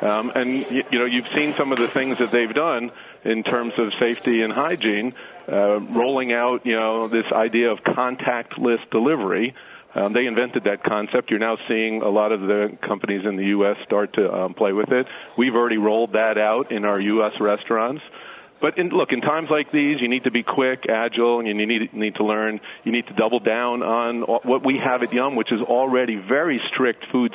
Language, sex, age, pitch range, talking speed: English, male, 50-69, 105-125 Hz, 210 wpm